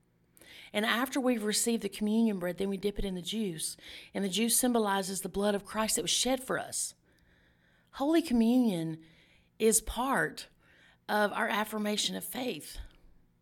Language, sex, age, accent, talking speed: English, female, 40-59, American, 160 wpm